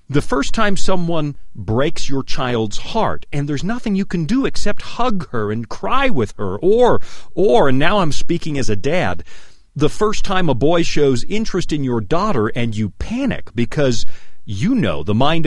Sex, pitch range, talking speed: male, 110-180 Hz, 185 wpm